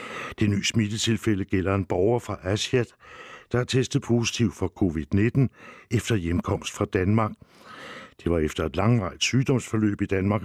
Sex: male